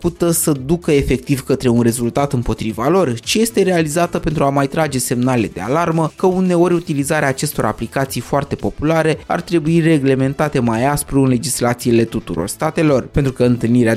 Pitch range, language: 130-175 Hz, Romanian